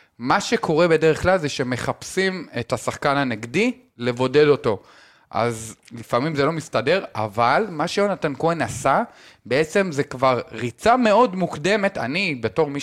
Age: 30-49